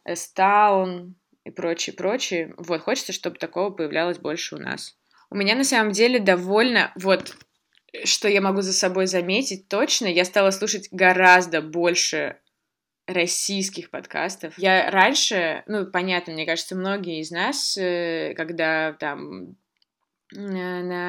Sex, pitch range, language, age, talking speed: female, 165-200 Hz, Russian, 20-39, 125 wpm